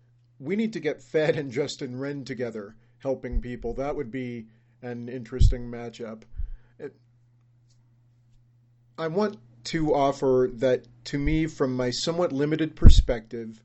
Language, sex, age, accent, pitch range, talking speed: English, male, 40-59, American, 120-140 Hz, 130 wpm